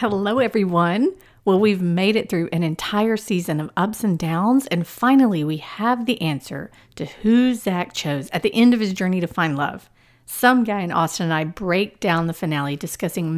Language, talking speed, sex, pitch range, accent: English, 195 wpm, female, 165-235 Hz, American